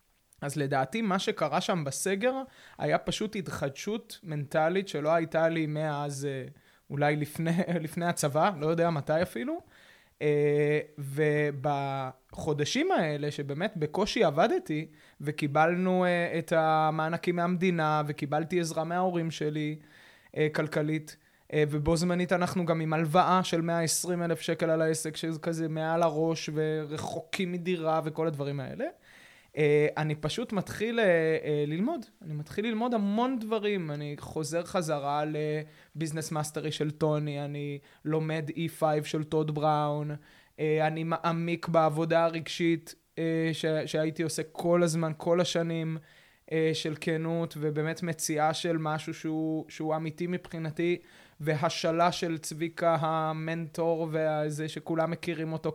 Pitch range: 155-170 Hz